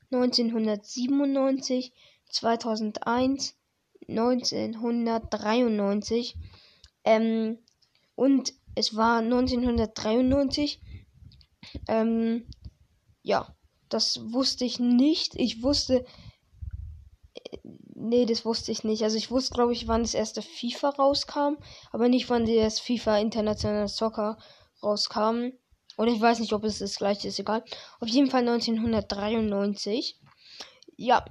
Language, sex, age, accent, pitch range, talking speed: German, female, 10-29, German, 225-260 Hz, 105 wpm